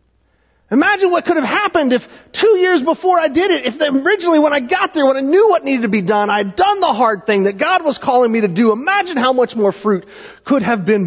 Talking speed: 255 wpm